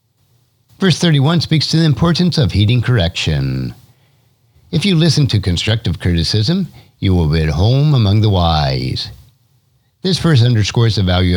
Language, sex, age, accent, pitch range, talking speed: English, male, 50-69, American, 90-130 Hz, 150 wpm